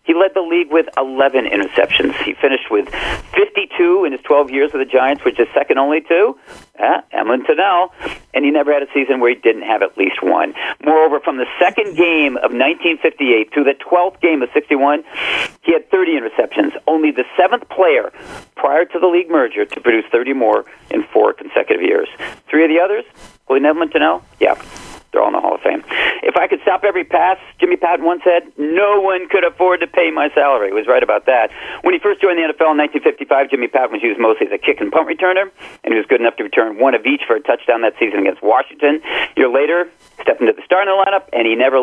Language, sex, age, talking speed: English, male, 40-59, 220 wpm